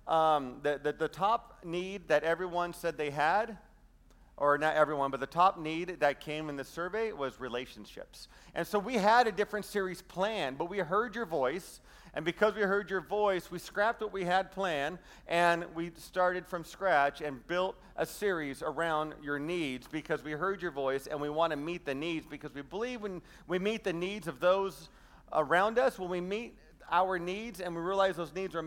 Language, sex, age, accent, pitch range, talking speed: English, male, 40-59, American, 155-200 Hz, 200 wpm